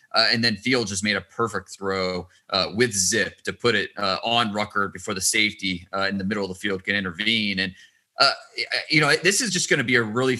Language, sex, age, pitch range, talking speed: English, male, 20-39, 100-130 Hz, 245 wpm